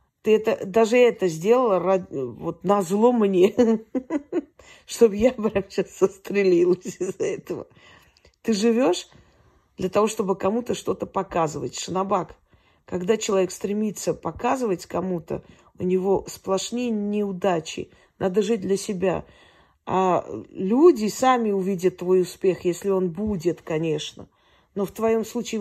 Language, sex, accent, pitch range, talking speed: Russian, female, native, 180-220 Hz, 115 wpm